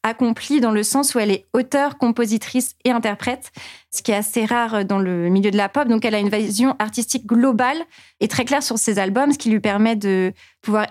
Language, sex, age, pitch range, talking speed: French, female, 30-49, 210-255 Hz, 225 wpm